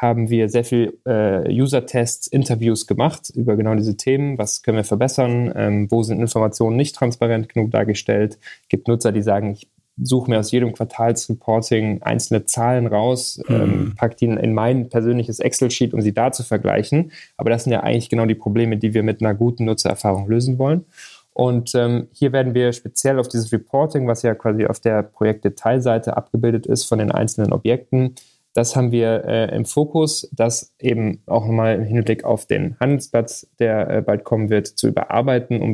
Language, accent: German, German